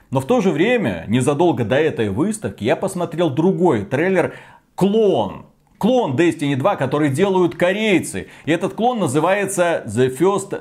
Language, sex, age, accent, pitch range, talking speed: Russian, male, 30-49, native, 135-185 Hz, 145 wpm